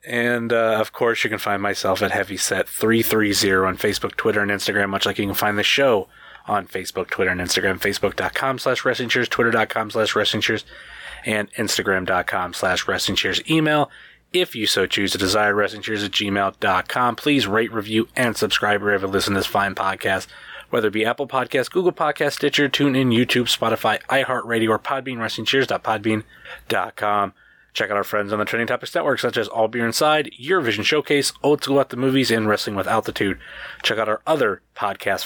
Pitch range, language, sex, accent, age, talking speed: 105-135 Hz, English, male, American, 20-39, 185 wpm